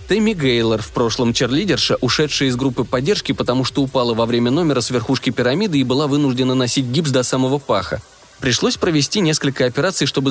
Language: Russian